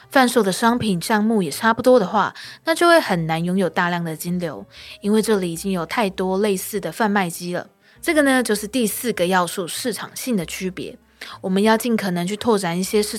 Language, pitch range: Chinese, 180-230 Hz